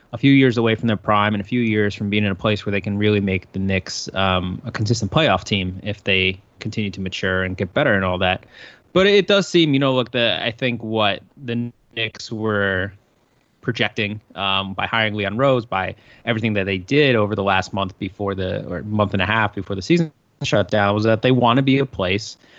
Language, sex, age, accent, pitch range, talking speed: English, male, 20-39, American, 100-130 Hz, 235 wpm